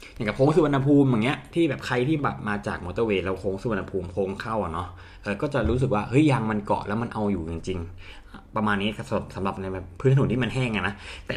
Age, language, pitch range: 20-39, Thai, 95-130 Hz